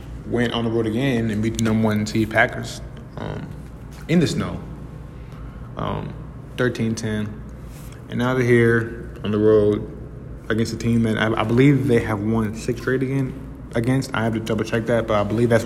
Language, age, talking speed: English, 20-39, 185 wpm